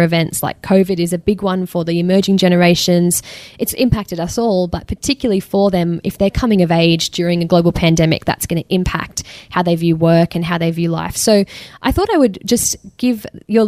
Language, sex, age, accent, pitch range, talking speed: English, female, 10-29, Australian, 175-205 Hz, 215 wpm